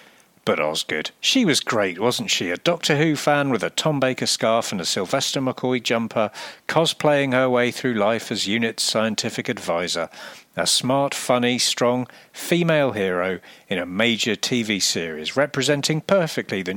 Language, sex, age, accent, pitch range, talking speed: English, male, 40-59, British, 110-150 Hz, 160 wpm